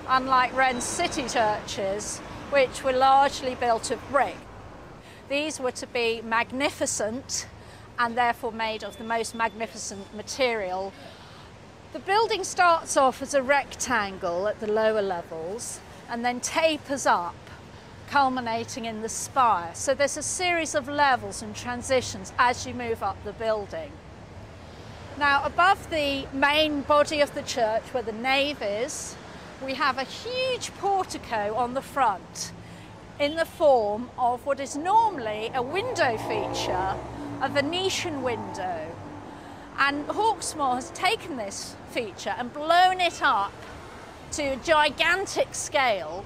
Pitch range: 230-300 Hz